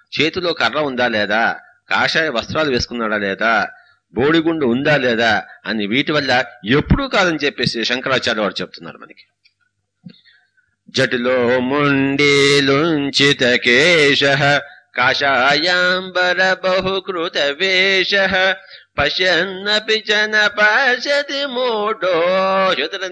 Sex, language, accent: male, English, Indian